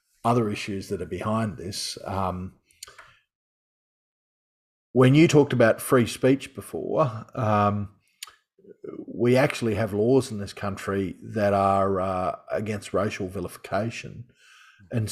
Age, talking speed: 40-59, 115 wpm